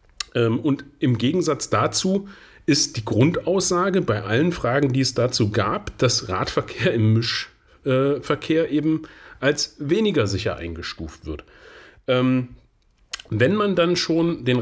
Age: 40-59